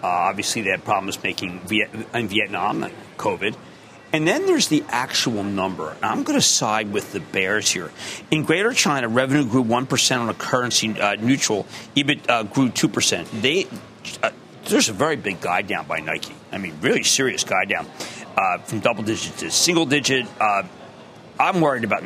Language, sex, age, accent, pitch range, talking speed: English, male, 40-59, American, 115-150 Hz, 175 wpm